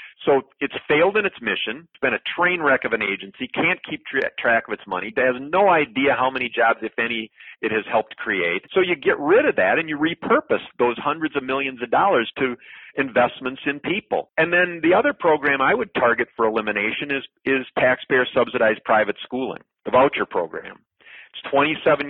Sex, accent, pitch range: male, American, 125-160 Hz